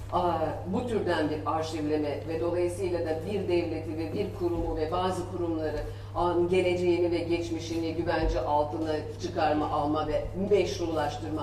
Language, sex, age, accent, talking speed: Turkish, female, 40-59, native, 135 wpm